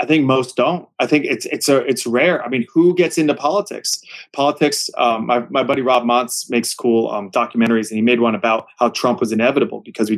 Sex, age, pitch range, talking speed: male, 20-39, 115-145 Hz, 230 wpm